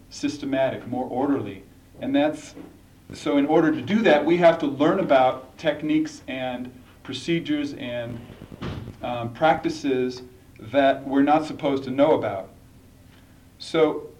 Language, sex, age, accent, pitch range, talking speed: English, male, 40-59, American, 105-165 Hz, 125 wpm